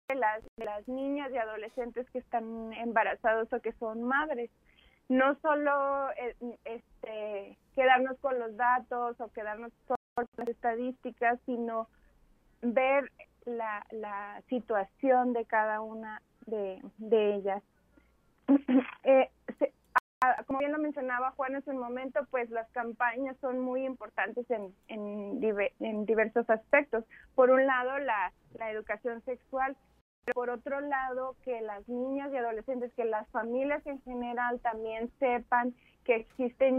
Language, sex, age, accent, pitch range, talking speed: Spanish, female, 30-49, Mexican, 225-255 Hz, 130 wpm